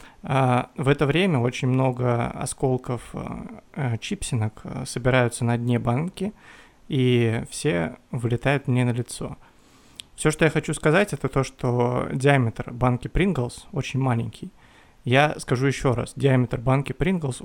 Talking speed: 125 wpm